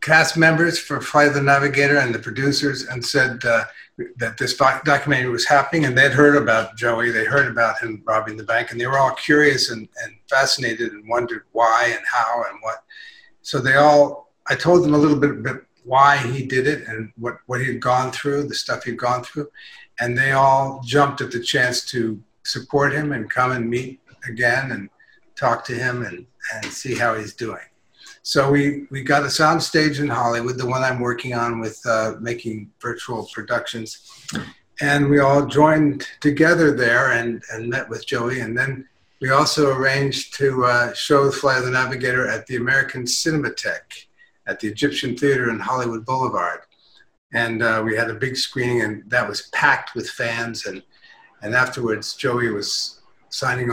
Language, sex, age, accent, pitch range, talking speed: English, male, 50-69, American, 120-145 Hz, 190 wpm